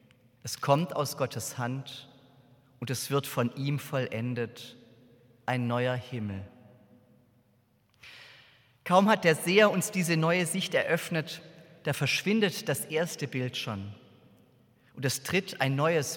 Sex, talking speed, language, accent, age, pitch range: male, 125 wpm, German, German, 30-49, 125-155 Hz